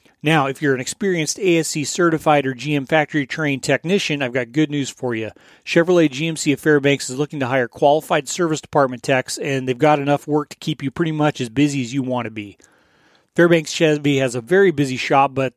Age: 30-49